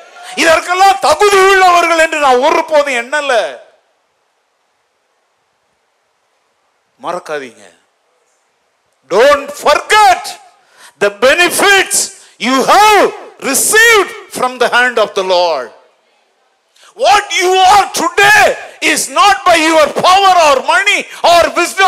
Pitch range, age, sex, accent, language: 245-380 Hz, 50-69, male, native, Tamil